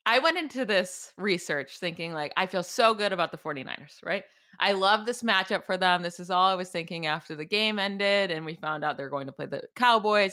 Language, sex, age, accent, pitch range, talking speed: English, female, 20-39, American, 180-235 Hz, 240 wpm